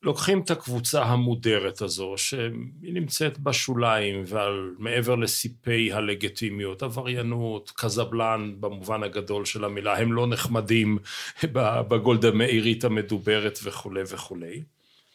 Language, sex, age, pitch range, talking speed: Hebrew, male, 40-59, 105-130 Hz, 100 wpm